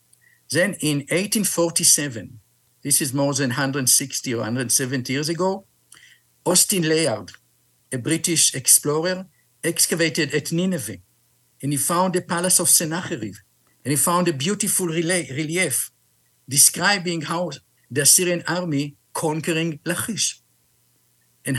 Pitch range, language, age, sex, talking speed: 130-170 Hz, English, 50-69, male, 115 wpm